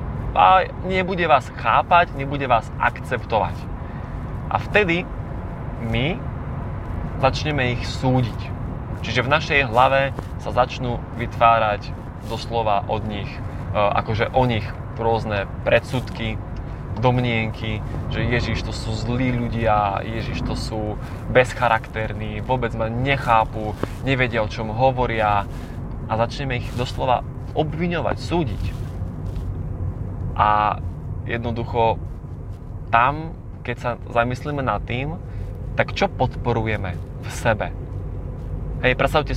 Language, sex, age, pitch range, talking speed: Slovak, male, 20-39, 105-125 Hz, 100 wpm